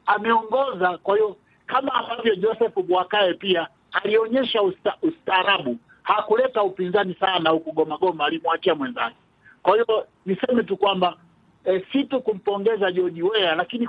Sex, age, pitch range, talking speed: male, 50-69, 180-230 Hz, 125 wpm